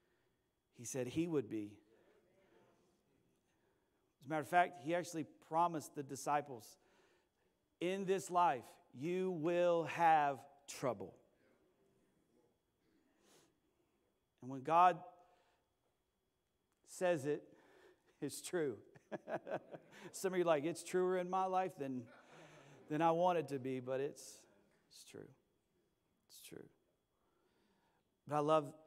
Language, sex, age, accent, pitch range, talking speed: English, male, 40-59, American, 135-180 Hz, 110 wpm